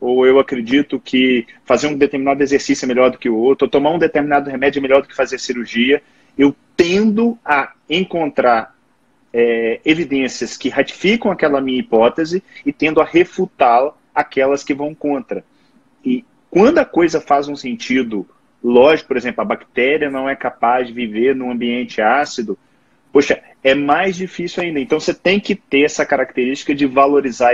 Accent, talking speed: Brazilian, 170 wpm